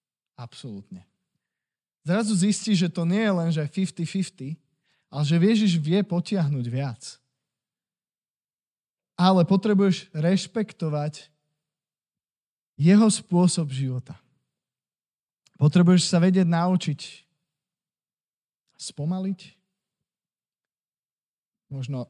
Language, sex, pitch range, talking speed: Slovak, male, 135-175 Hz, 75 wpm